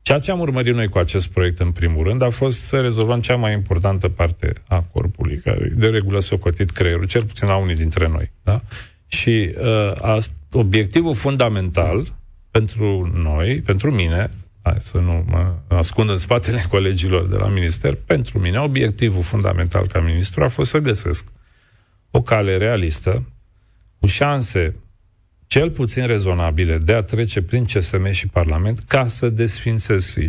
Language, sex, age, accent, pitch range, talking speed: Romanian, male, 40-59, native, 90-115 Hz, 160 wpm